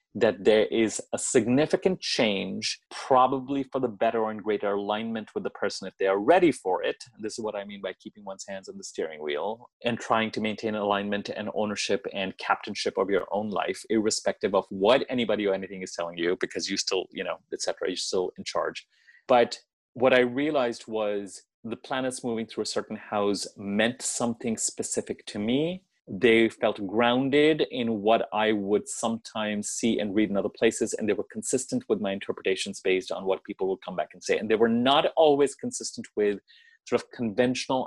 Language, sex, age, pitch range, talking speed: English, male, 30-49, 105-125 Hz, 200 wpm